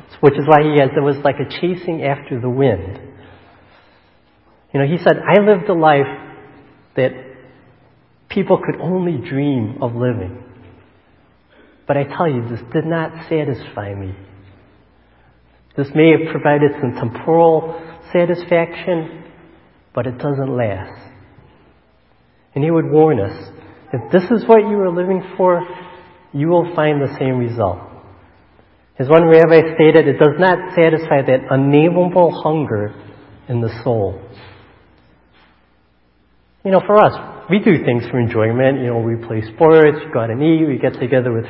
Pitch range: 115-160 Hz